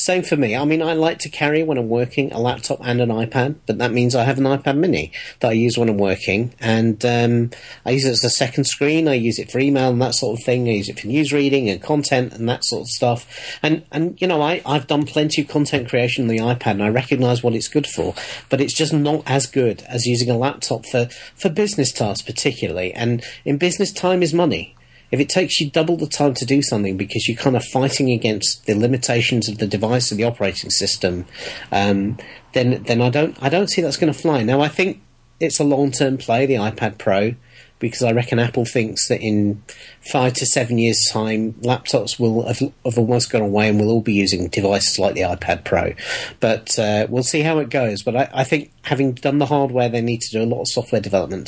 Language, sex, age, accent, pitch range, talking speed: English, male, 40-59, British, 110-140 Hz, 240 wpm